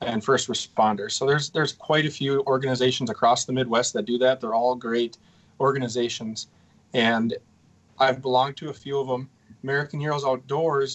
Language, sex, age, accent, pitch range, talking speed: English, male, 30-49, American, 120-140 Hz, 170 wpm